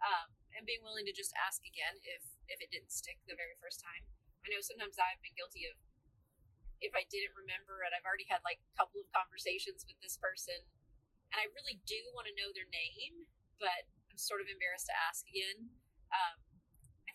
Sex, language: female, English